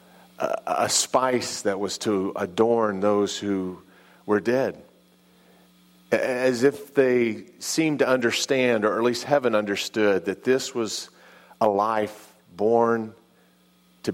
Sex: male